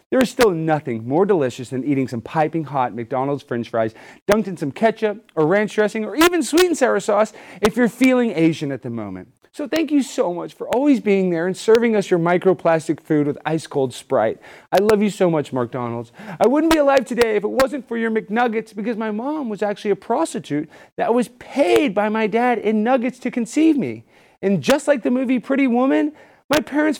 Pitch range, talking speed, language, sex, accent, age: 150-250 Hz, 215 wpm, English, male, American, 40-59